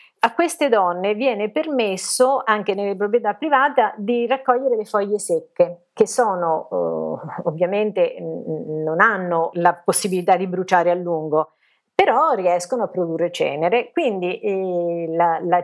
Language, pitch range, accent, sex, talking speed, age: Italian, 175-250 Hz, native, female, 125 wpm, 40-59